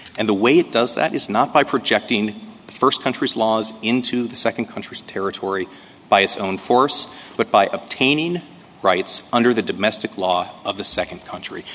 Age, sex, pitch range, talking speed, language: 30-49, male, 95-135 Hz, 180 wpm, English